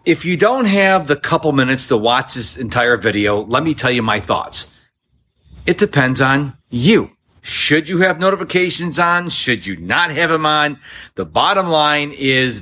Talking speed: 175 wpm